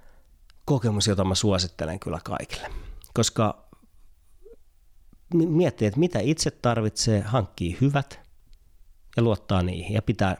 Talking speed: 110 wpm